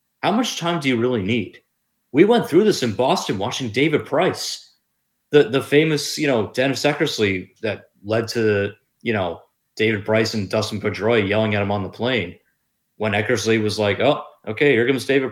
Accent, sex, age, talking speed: American, male, 30-49, 190 wpm